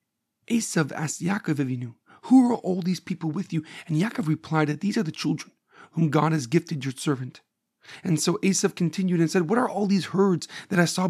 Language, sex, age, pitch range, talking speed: English, male, 40-59, 160-205 Hz, 210 wpm